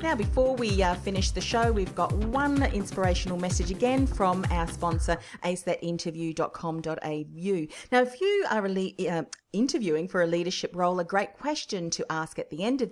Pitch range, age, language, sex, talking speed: 165-225 Hz, 40-59, English, female, 165 wpm